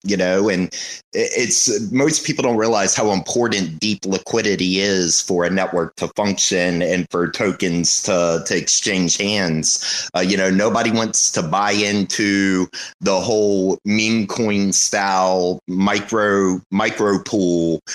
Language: English